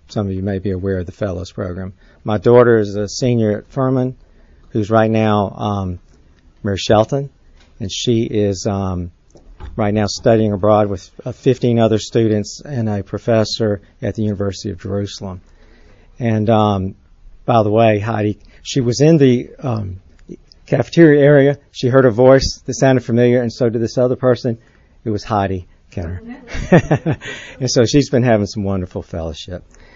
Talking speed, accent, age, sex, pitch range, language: 165 wpm, American, 50-69, male, 95-120 Hz, English